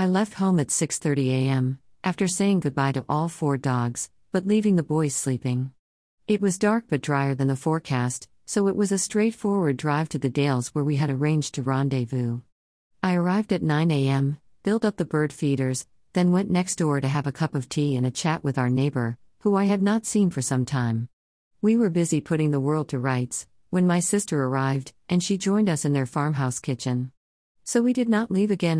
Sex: female